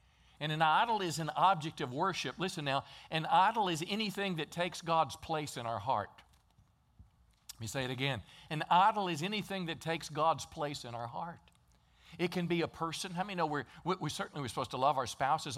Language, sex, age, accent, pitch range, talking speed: English, male, 50-69, American, 130-165 Hz, 205 wpm